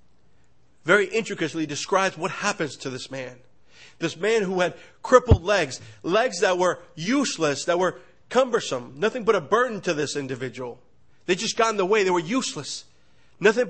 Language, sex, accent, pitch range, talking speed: English, male, American, 160-220 Hz, 165 wpm